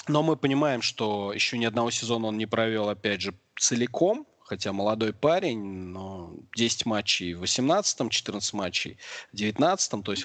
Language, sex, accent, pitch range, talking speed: Russian, male, native, 100-120 Hz, 165 wpm